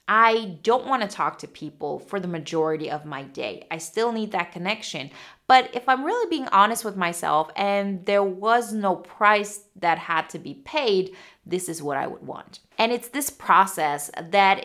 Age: 30-49